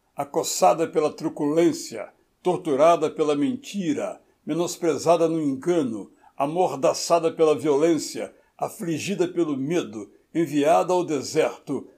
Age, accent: 60-79, Brazilian